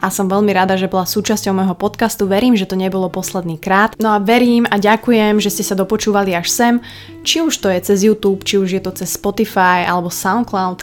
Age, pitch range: 20-39, 185-215 Hz